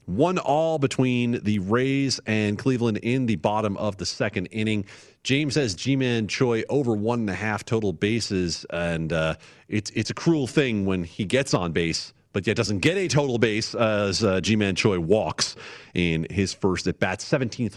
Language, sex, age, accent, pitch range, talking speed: English, male, 40-59, American, 95-125 Hz, 180 wpm